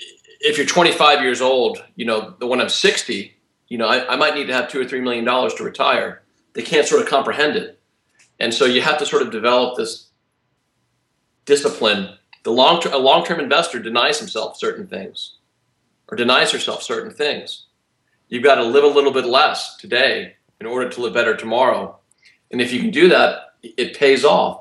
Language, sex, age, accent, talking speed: English, male, 40-59, American, 190 wpm